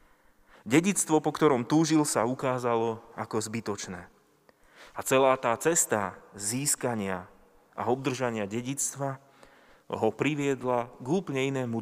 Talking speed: 105 wpm